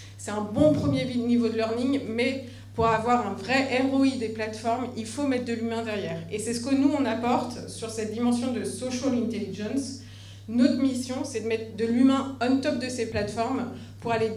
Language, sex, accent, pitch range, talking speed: French, female, French, 215-255 Hz, 200 wpm